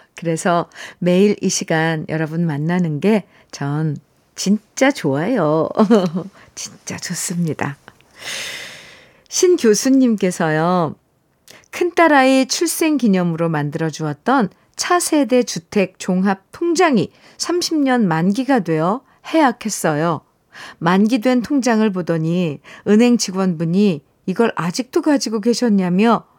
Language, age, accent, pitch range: Korean, 50-69, native, 165-245 Hz